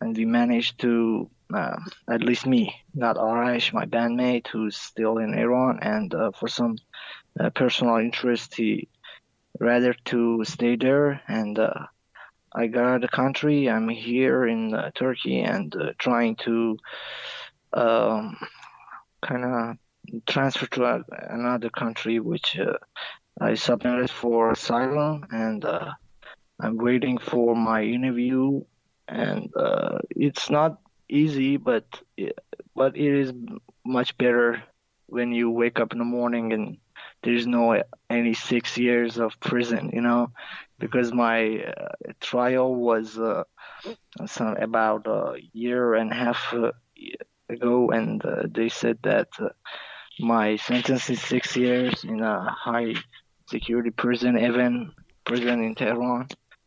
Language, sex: English, male